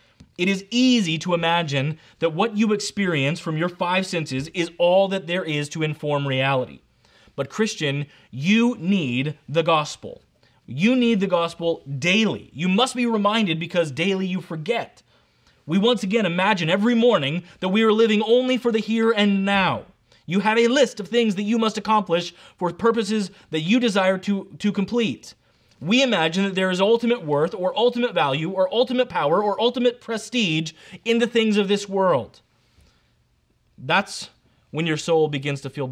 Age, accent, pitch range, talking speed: 30-49, American, 140-205 Hz, 170 wpm